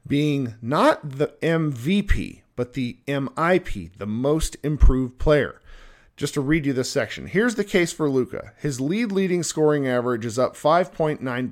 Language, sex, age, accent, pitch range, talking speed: English, male, 40-59, American, 125-160 Hz, 155 wpm